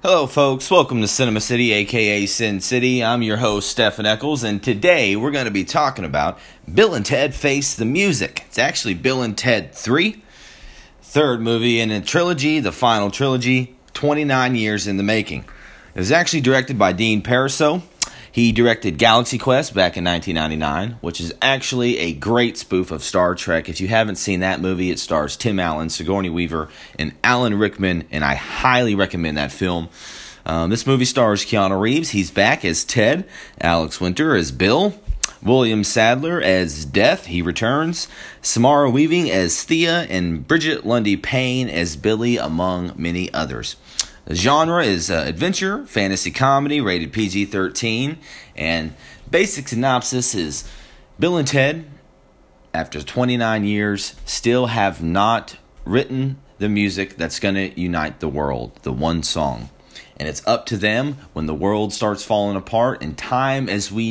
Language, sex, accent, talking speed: English, male, American, 160 wpm